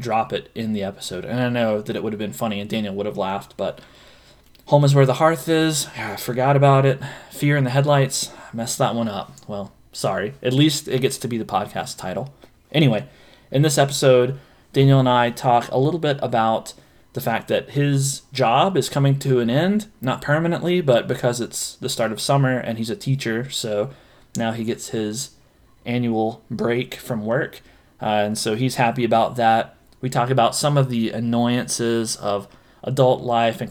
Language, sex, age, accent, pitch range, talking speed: English, male, 20-39, American, 115-135 Hz, 200 wpm